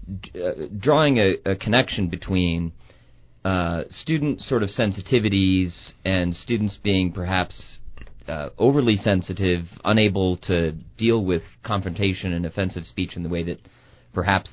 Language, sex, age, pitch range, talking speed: English, male, 30-49, 90-115 Hz, 125 wpm